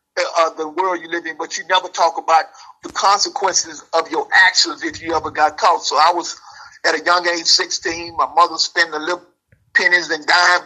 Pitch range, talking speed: 155-175 Hz, 210 wpm